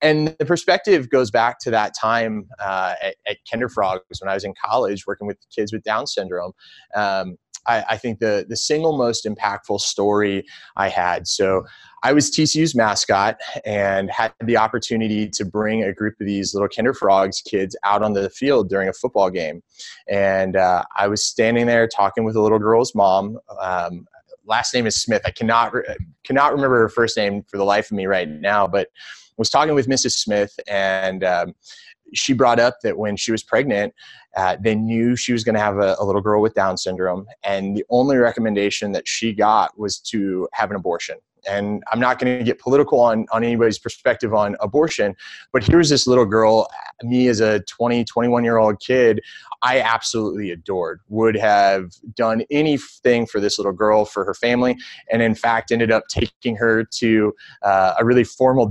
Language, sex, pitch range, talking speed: English, male, 100-120 Hz, 190 wpm